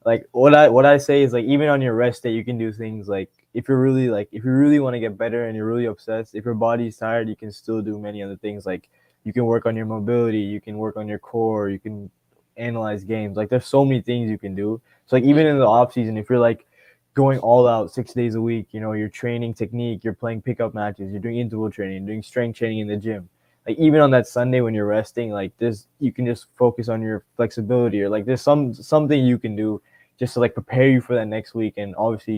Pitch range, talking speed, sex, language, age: 105-125 Hz, 265 wpm, male, English, 20-39